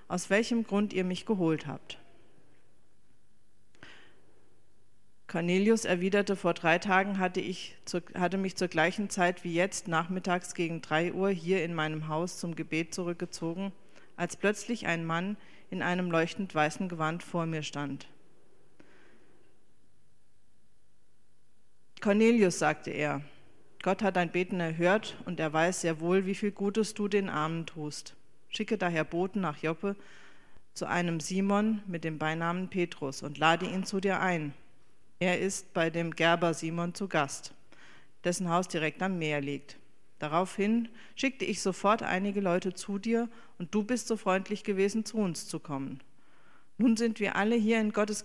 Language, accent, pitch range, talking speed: German, German, 155-195 Hz, 150 wpm